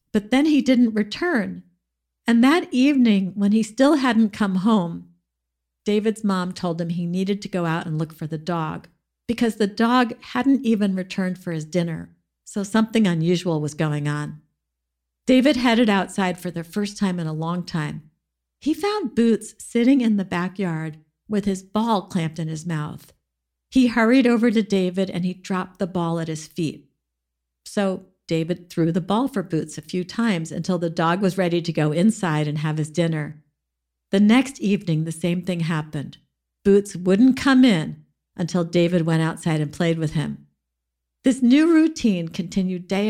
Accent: American